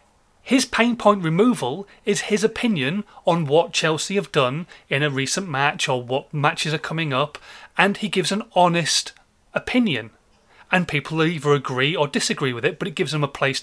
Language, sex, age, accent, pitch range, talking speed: English, male, 30-49, British, 145-185 Hz, 185 wpm